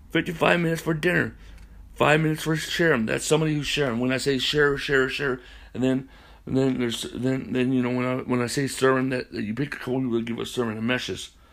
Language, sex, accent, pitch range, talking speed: English, male, American, 115-140 Hz, 240 wpm